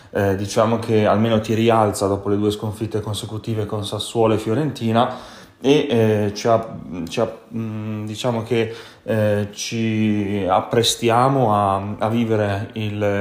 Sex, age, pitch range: male, 30-49, 105-115 Hz